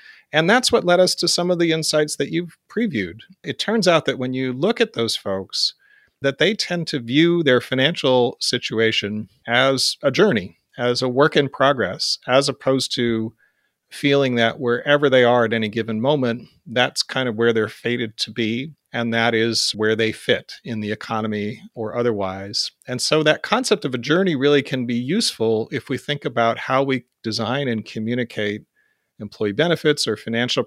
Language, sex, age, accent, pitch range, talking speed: English, male, 40-59, American, 115-145 Hz, 185 wpm